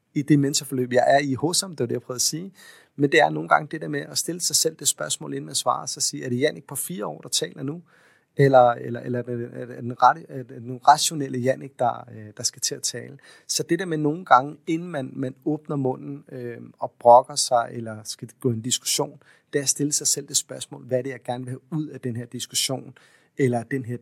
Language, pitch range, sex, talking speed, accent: Danish, 125-150 Hz, male, 270 wpm, native